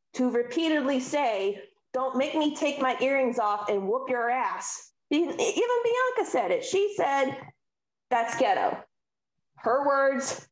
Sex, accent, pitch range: female, American, 215-290 Hz